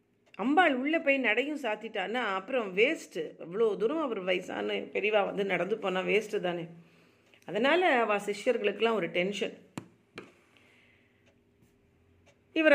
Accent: native